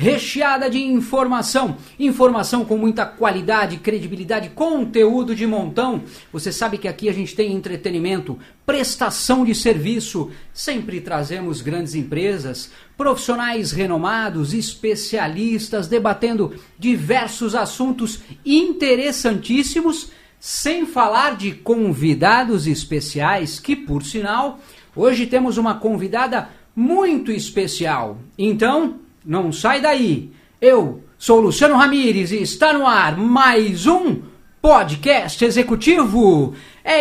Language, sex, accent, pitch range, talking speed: Portuguese, male, Brazilian, 200-255 Hz, 105 wpm